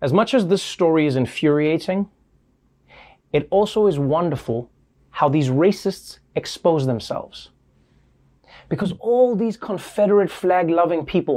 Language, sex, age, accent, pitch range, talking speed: English, male, 30-49, American, 160-225 Hz, 120 wpm